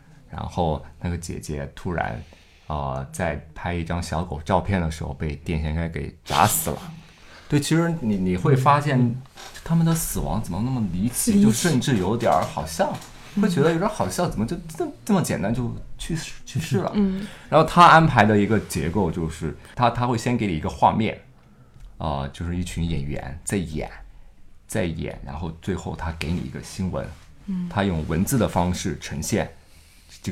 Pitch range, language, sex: 80-120 Hz, Chinese, male